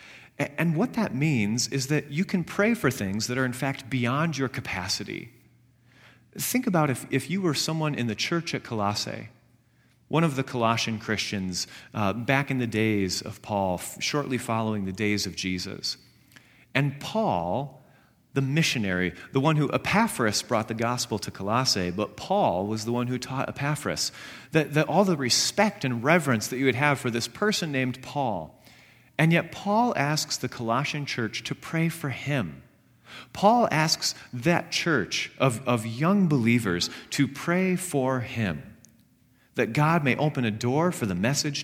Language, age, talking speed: English, 40-59, 170 wpm